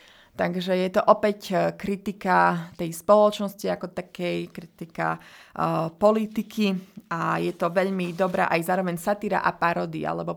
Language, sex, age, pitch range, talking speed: Slovak, female, 30-49, 165-200 Hz, 135 wpm